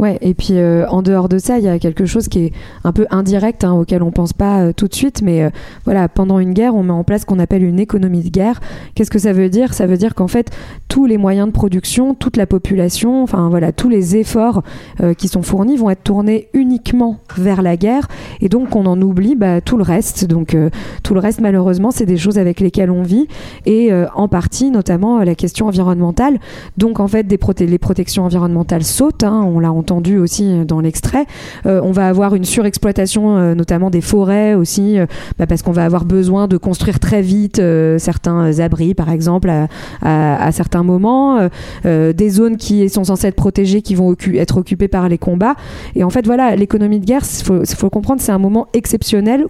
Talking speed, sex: 230 wpm, female